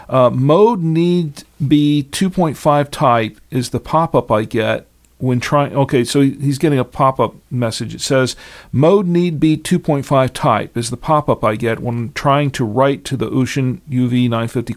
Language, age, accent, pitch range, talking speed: English, 50-69, American, 120-150 Hz, 165 wpm